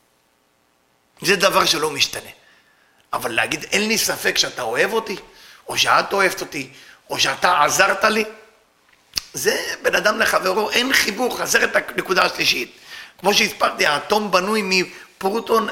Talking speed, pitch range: 135 wpm, 185-295 Hz